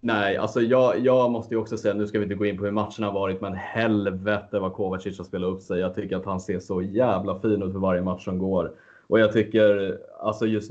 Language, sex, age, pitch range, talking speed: Swedish, male, 30-49, 95-110 Hz, 260 wpm